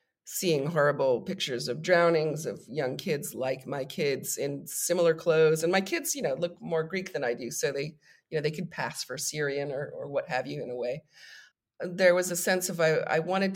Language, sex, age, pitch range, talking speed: English, female, 40-59, 145-180 Hz, 220 wpm